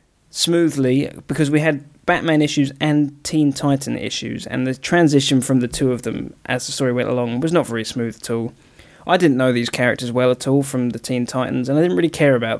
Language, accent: English, British